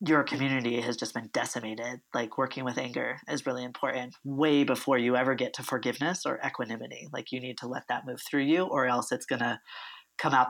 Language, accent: English, American